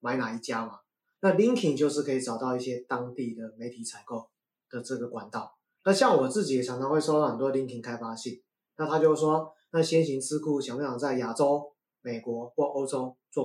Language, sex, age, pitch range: Chinese, male, 20-39, 125-175 Hz